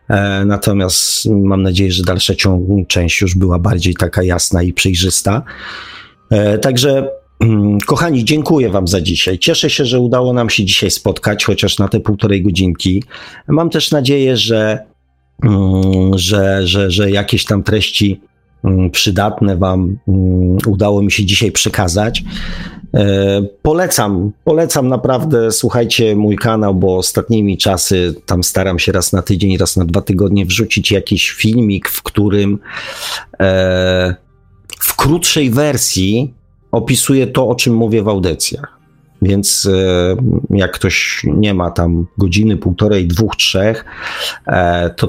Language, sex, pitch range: Polish, male, 95-110 Hz